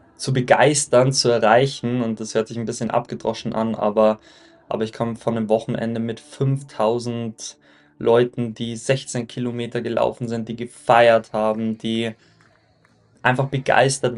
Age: 20-39